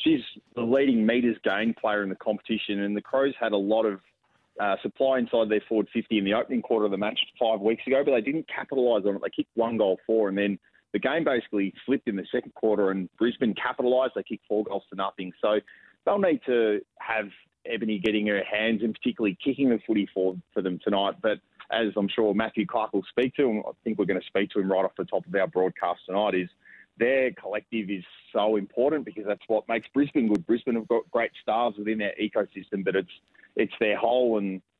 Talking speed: 230 wpm